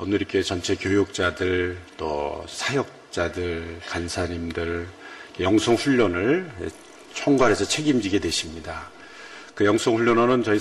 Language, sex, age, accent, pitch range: Korean, male, 40-59, native, 90-105 Hz